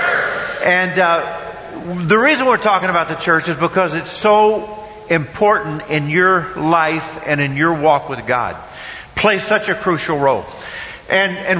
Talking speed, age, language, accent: 155 wpm, 50-69, English, American